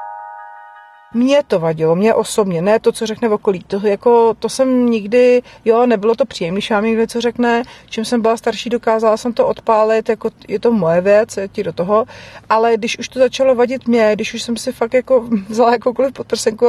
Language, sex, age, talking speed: Czech, female, 40-59, 200 wpm